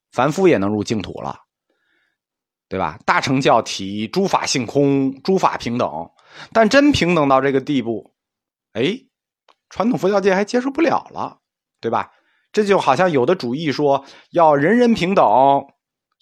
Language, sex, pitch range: Chinese, male, 120-200 Hz